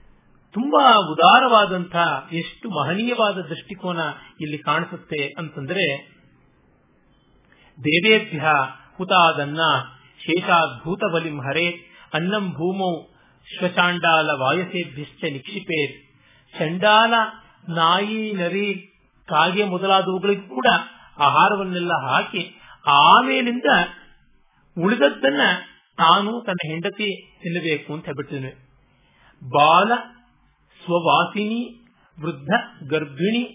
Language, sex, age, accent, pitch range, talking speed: Kannada, male, 50-69, native, 155-195 Hz, 55 wpm